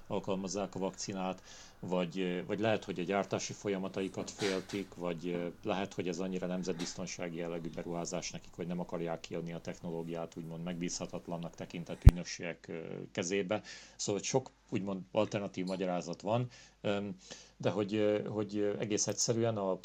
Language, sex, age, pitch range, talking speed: Hungarian, male, 40-59, 85-105 Hz, 125 wpm